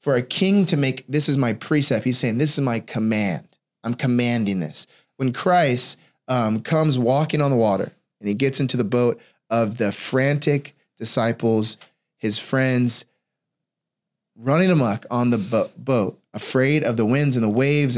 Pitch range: 115-145 Hz